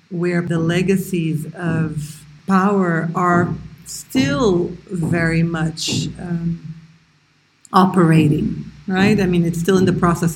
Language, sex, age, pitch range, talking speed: English, female, 40-59, 160-185 Hz, 110 wpm